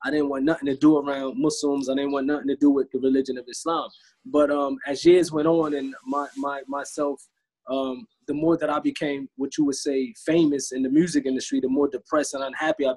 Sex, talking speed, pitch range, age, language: male, 230 wpm, 135-150 Hz, 20-39, English